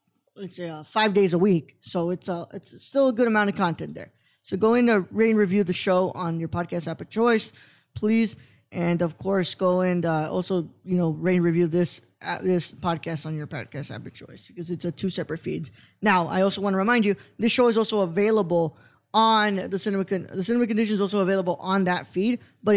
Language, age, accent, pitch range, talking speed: English, 20-39, American, 170-210 Hz, 225 wpm